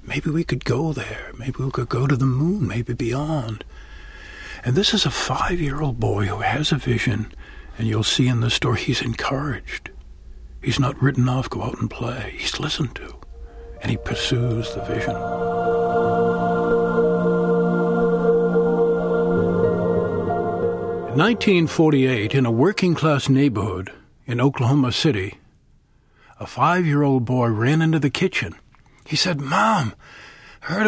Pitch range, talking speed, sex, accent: 125-170 Hz, 135 wpm, male, American